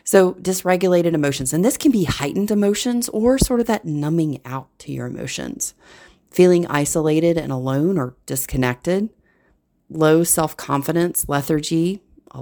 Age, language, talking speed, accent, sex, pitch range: 30-49, English, 135 wpm, American, female, 135-190 Hz